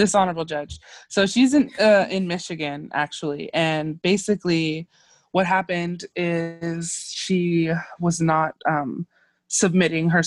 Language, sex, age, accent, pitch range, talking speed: English, female, 20-39, American, 150-180 Hz, 125 wpm